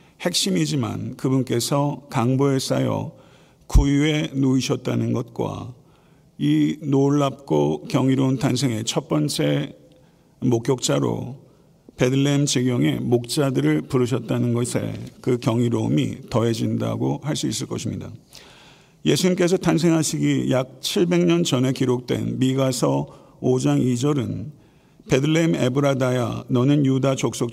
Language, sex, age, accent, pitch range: Korean, male, 50-69, native, 125-150 Hz